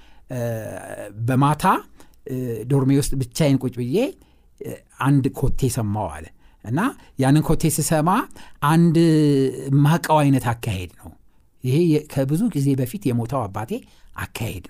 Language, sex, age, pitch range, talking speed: Amharic, male, 60-79, 125-165 Hz, 90 wpm